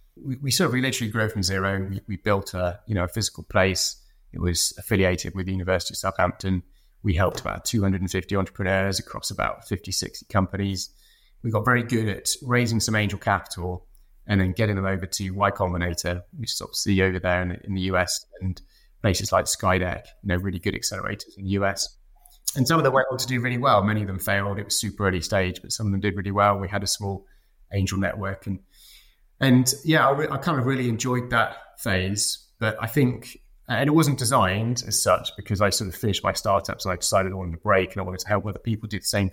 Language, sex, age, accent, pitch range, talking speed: English, male, 20-39, British, 95-110 Hz, 225 wpm